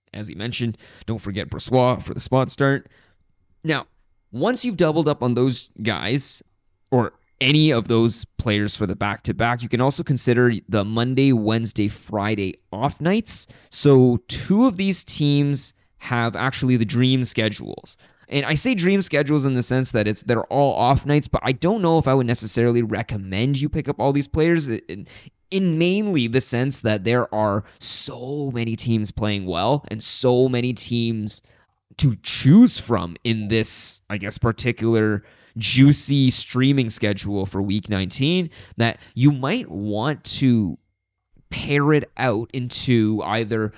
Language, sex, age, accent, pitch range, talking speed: English, male, 20-39, American, 105-135 Hz, 160 wpm